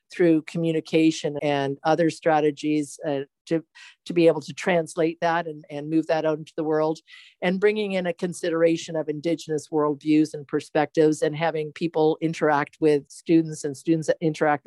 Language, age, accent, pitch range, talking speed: English, 50-69, American, 155-180 Hz, 170 wpm